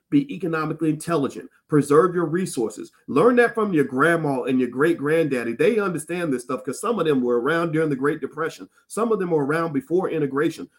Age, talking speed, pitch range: 40-59, 200 wpm, 145-205 Hz